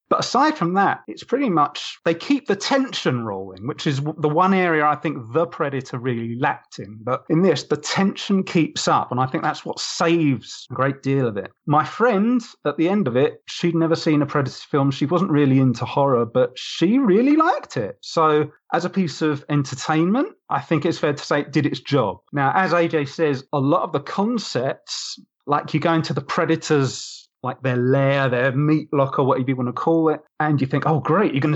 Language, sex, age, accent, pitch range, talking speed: English, male, 30-49, British, 130-160 Hz, 220 wpm